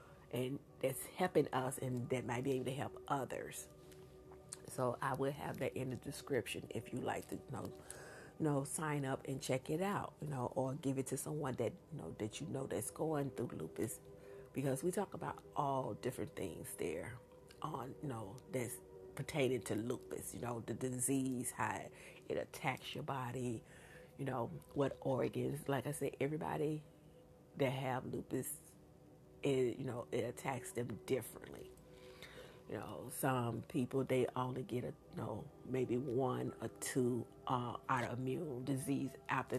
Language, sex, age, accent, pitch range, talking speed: English, female, 40-59, American, 120-140 Hz, 165 wpm